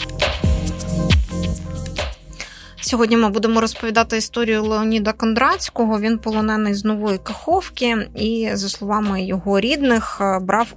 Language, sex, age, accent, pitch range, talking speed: Ukrainian, female, 20-39, native, 190-230 Hz, 100 wpm